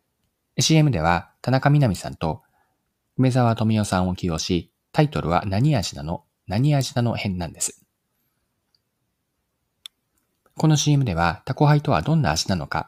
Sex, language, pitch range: male, Japanese, 90-130 Hz